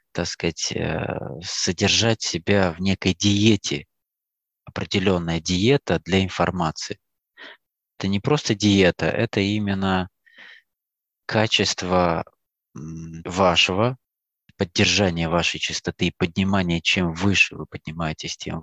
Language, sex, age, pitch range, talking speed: Russian, male, 20-39, 85-100 Hz, 95 wpm